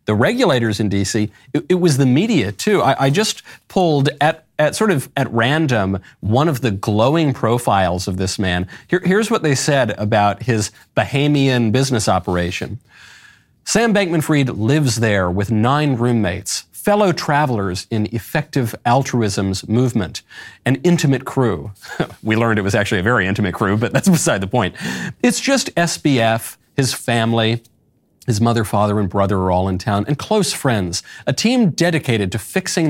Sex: male